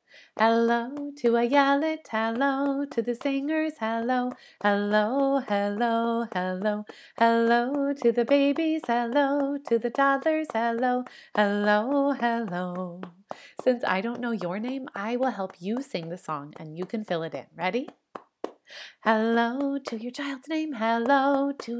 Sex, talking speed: female, 140 wpm